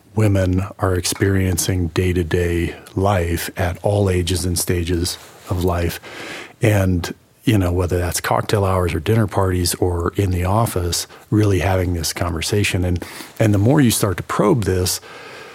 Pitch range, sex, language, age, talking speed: 90-105 Hz, male, English, 40-59, 150 wpm